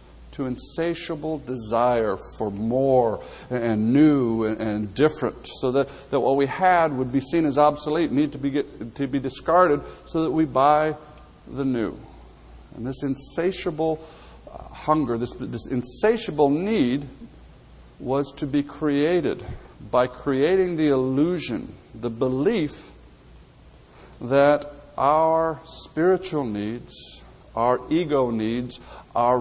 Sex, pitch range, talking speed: male, 115-150 Hz, 120 wpm